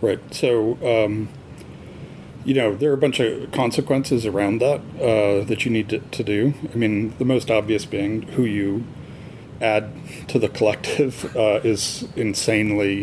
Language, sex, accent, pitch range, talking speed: English, male, American, 105-125 Hz, 160 wpm